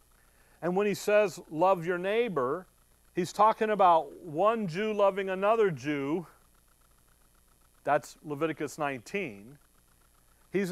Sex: male